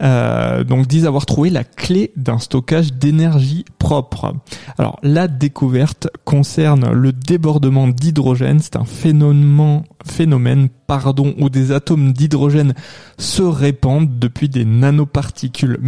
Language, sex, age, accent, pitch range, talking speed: French, male, 20-39, French, 130-155 Hz, 115 wpm